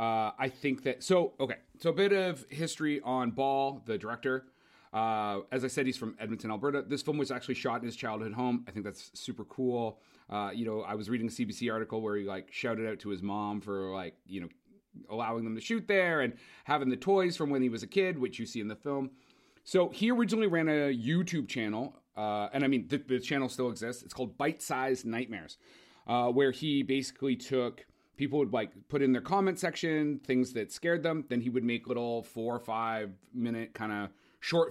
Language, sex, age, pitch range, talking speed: English, male, 30-49, 115-145 Hz, 225 wpm